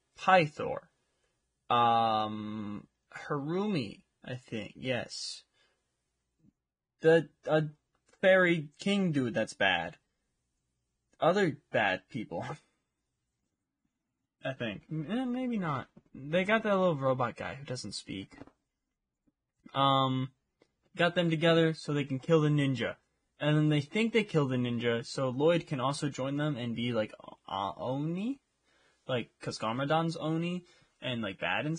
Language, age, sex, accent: English, 20-39, male, American